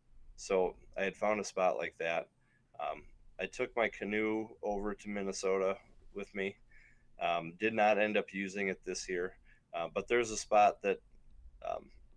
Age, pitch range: 30-49, 90-105 Hz